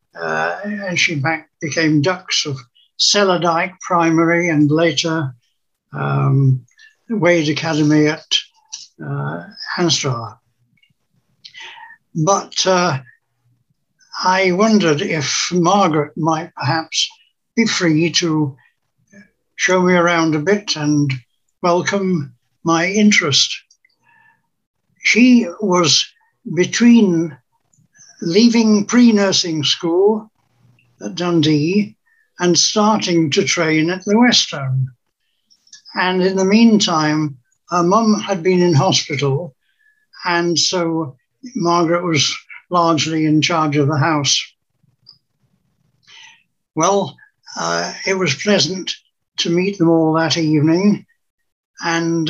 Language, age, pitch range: English, 60-79, 150-195 Hz